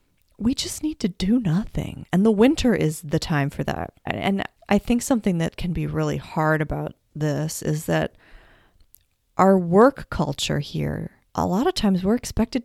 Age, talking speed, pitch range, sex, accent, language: 30-49, 175 wpm, 150-205 Hz, female, American, English